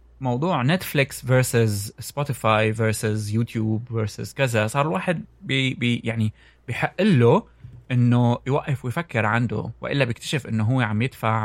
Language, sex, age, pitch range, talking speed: Arabic, male, 20-39, 110-140 Hz, 125 wpm